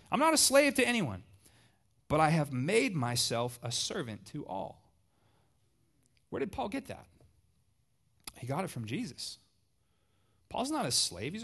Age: 30-49